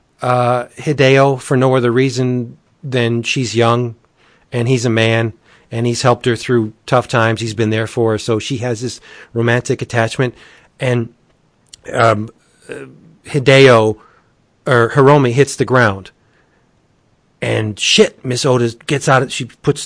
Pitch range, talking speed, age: 115-140 Hz, 145 wpm, 40-59